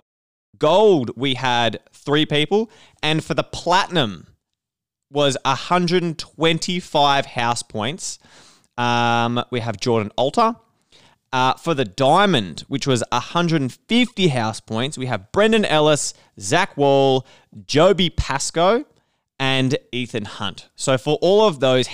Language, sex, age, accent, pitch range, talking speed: English, male, 20-39, Australian, 115-155 Hz, 120 wpm